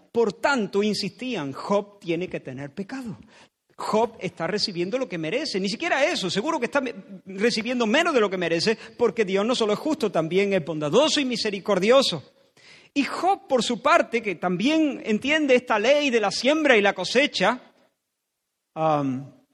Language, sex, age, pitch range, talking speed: Spanish, male, 40-59, 195-270 Hz, 165 wpm